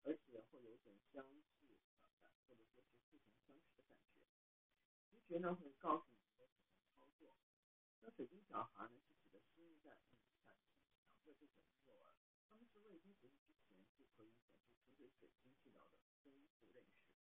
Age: 50-69